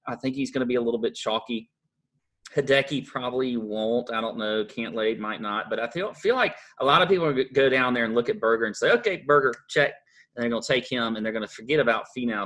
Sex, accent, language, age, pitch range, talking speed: male, American, English, 30-49, 110-140 Hz, 255 wpm